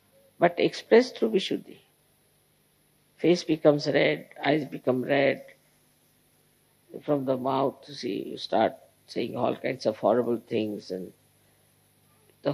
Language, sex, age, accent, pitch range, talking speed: English, female, 50-69, Indian, 150-250 Hz, 120 wpm